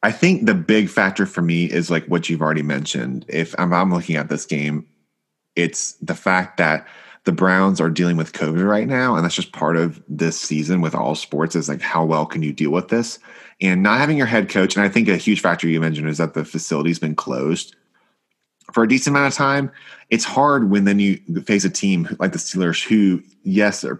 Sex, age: male, 30-49